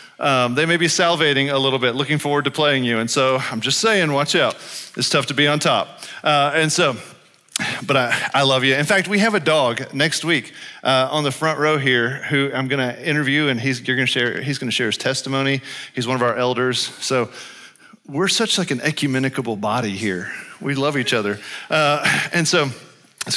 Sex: male